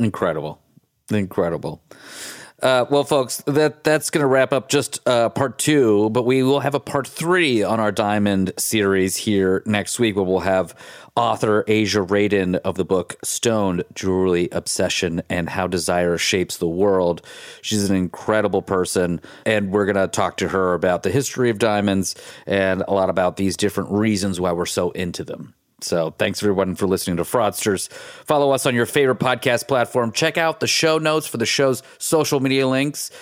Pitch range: 95-130 Hz